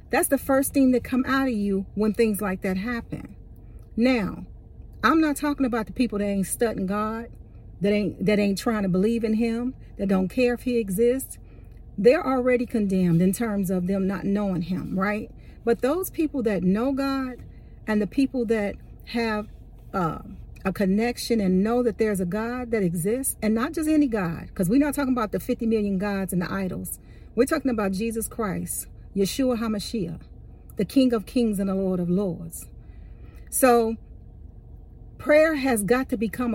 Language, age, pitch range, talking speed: English, 50-69, 195-250 Hz, 185 wpm